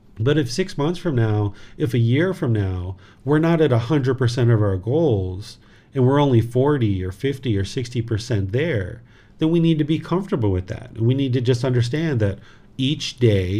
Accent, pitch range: American, 105-130 Hz